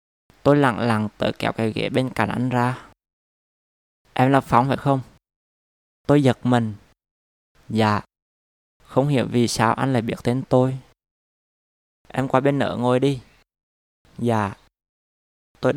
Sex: male